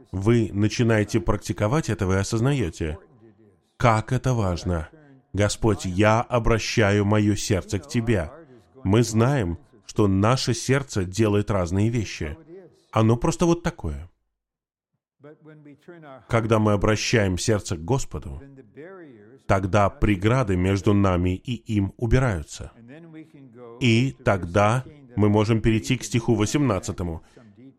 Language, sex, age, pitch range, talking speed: Russian, male, 10-29, 100-130 Hz, 105 wpm